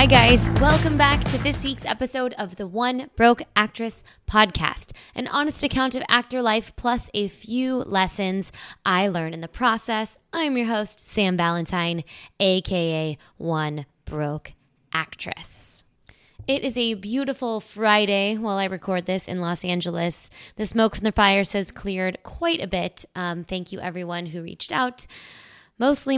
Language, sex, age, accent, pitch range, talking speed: English, female, 20-39, American, 175-235 Hz, 155 wpm